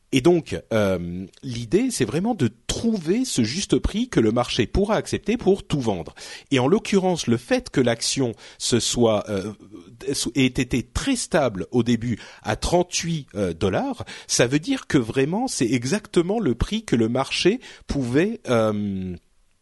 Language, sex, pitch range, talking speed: French, male, 110-160 Hz, 160 wpm